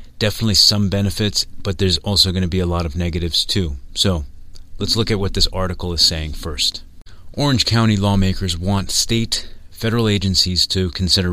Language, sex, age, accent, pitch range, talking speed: English, male, 30-49, American, 85-100 Hz, 175 wpm